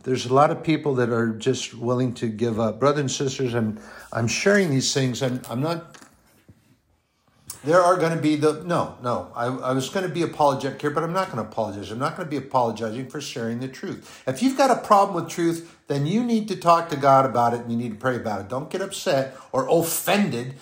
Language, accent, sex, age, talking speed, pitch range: English, American, male, 50-69, 230 wpm, 125-175 Hz